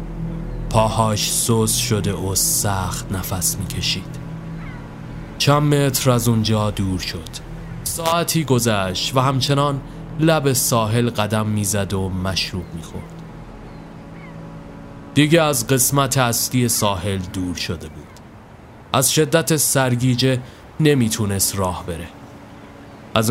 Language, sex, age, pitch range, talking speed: Persian, male, 30-49, 100-135 Hz, 100 wpm